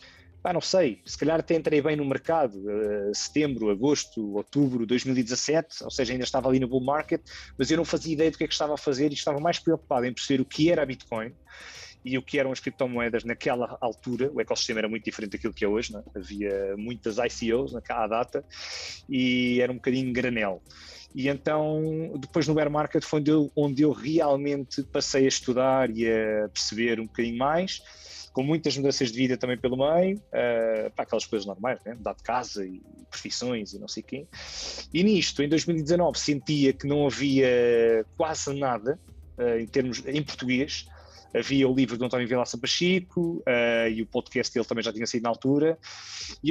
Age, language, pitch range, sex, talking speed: 20-39, Portuguese, 115-155 Hz, male, 200 wpm